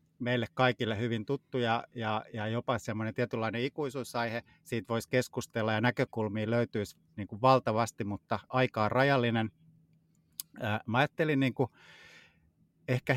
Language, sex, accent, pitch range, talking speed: Finnish, male, native, 110-140 Hz, 105 wpm